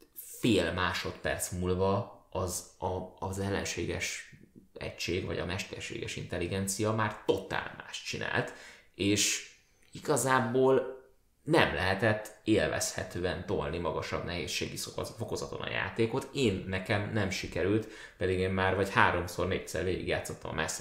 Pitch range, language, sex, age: 95-115 Hz, Hungarian, male, 20-39